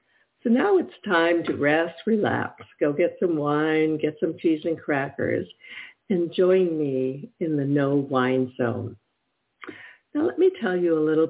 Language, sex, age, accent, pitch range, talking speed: English, female, 60-79, American, 150-195 Hz, 160 wpm